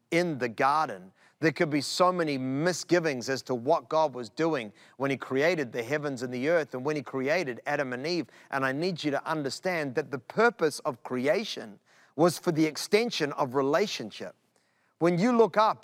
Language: English